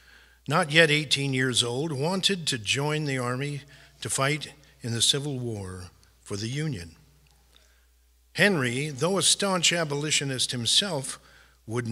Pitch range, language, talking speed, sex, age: 110-145 Hz, English, 130 wpm, male, 50-69